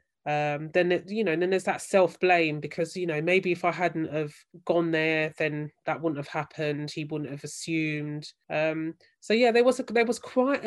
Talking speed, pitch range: 220 wpm, 155-195 Hz